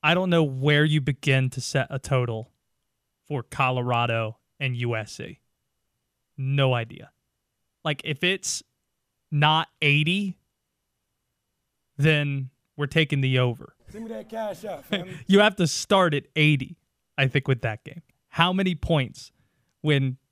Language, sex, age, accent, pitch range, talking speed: English, male, 20-39, American, 135-170 Hz, 120 wpm